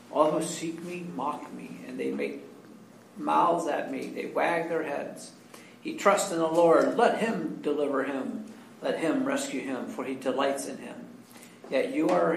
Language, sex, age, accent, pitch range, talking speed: English, male, 50-69, American, 145-170 Hz, 180 wpm